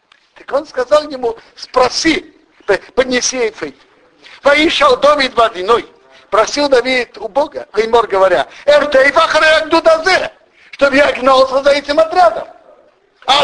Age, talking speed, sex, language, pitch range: 50-69, 120 wpm, male, Russian, 185-285 Hz